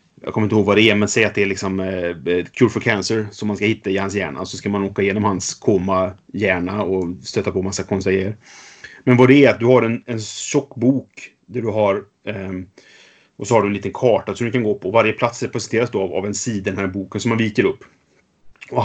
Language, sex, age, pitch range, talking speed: Swedish, male, 30-49, 100-125 Hz, 265 wpm